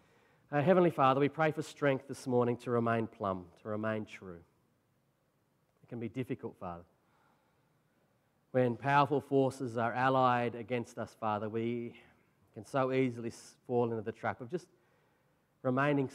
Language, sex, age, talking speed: English, male, 40-59, 140 wpm